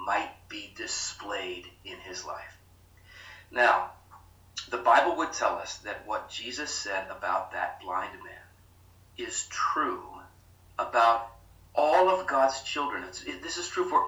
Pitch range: 90-120 Hz